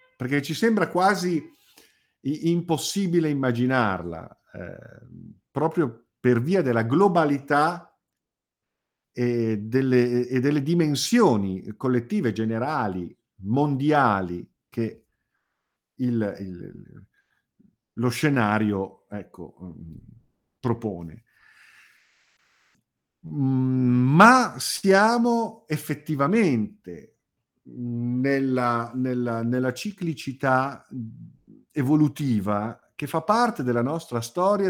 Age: 50-69